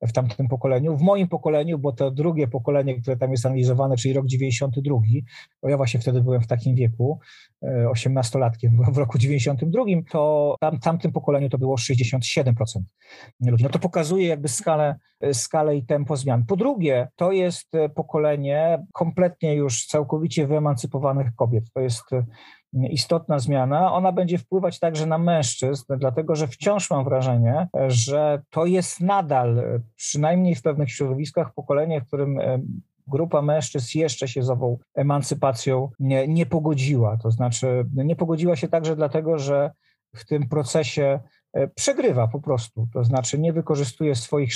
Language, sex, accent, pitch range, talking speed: Polish, male, native, 130-160 Hz, 150 wpm